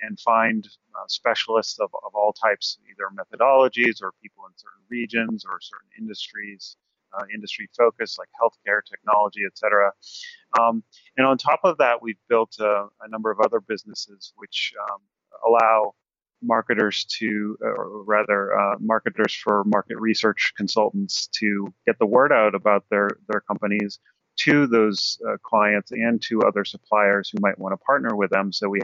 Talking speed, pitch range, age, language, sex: 165 wpm, 105-115 Hz, 30-49, English, male